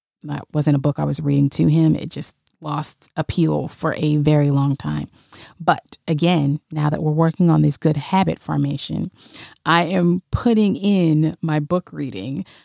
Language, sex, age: English, female, 30-49